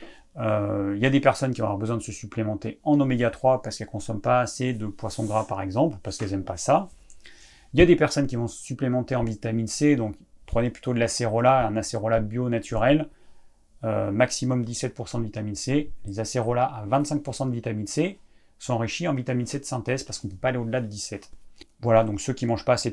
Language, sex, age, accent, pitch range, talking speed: French, male, 30-49, French, 110-135 Hz, 230 wpm